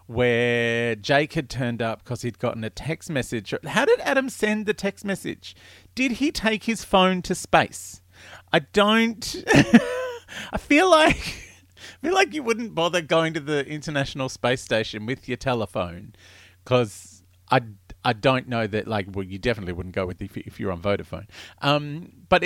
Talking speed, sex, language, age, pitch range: 175 wpm, male, English, 40-59, 95-150 Hz